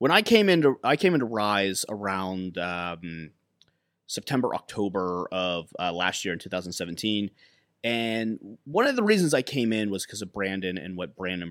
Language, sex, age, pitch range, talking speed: English, male, 30-49, 95-130 Hz, 170 wpm